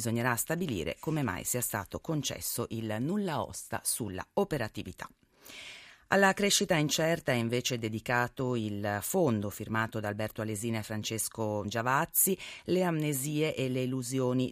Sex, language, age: female, Italian, 30-49